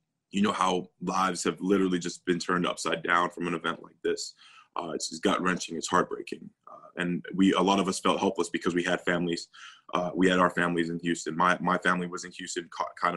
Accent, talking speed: American, 230 wpm